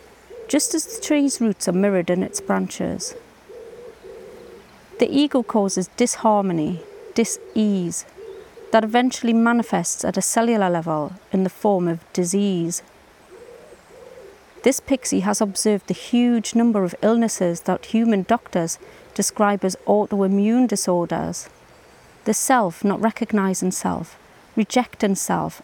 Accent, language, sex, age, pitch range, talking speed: British, English, female, 30-49, 190-240 Hz, 115 wpm